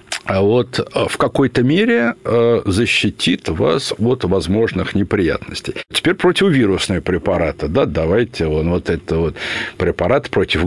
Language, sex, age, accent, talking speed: Russian, male, 60-79, native, 120 wpm